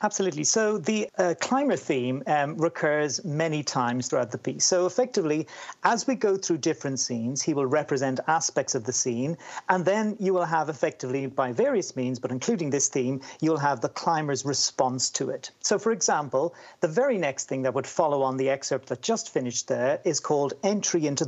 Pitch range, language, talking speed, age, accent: 135-190 Hz, English, 195 wpm, 40-59, British